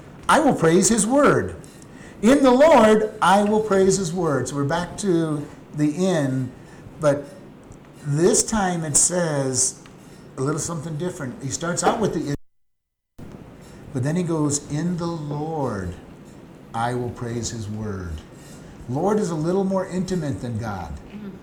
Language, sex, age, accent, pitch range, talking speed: English, male, 50-69, American, 130-180 Hz, 150 wpm